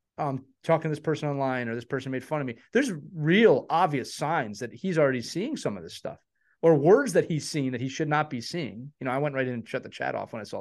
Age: 30-49